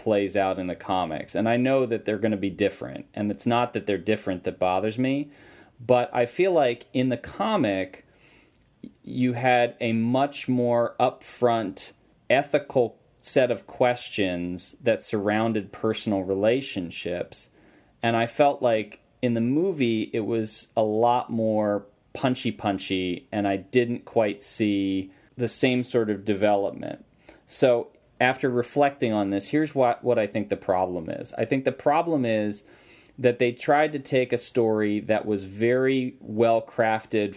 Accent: American